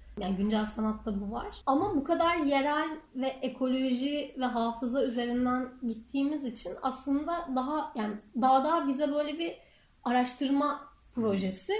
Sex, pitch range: female, 215-265 Hz